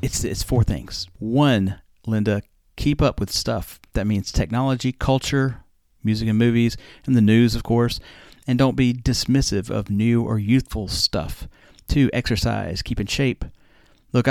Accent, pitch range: American, 95-125 Hz